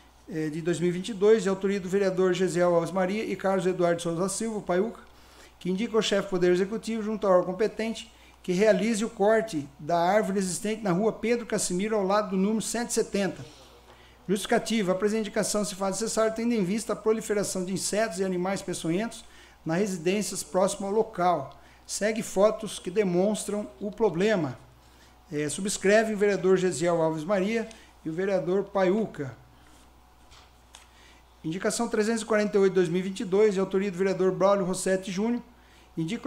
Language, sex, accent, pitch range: Portuguese, male, Brazilian, 180-215 Hz